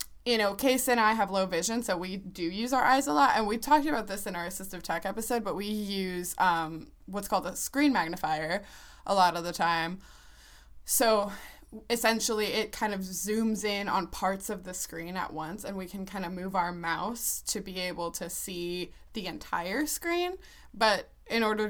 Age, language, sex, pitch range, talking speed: 20-39, English, female, 170-210 Hz, 200 wpm